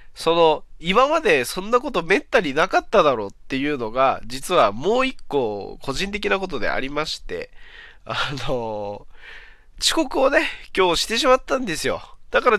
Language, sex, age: Japanese, male, 20-39